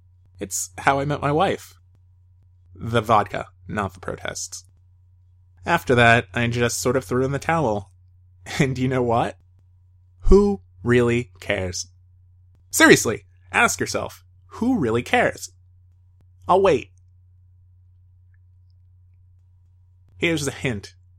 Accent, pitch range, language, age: American, 90-125 Hz, English, 20-39